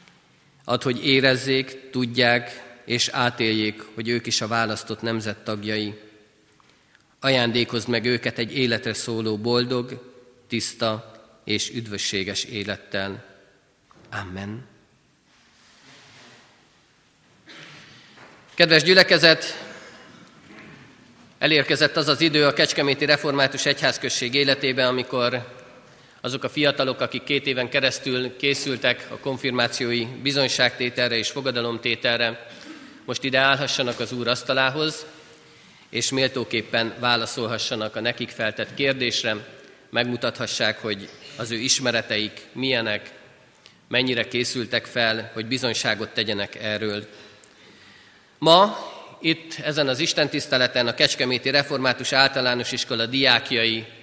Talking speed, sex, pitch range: 95 wpm, male, 115-135 Hz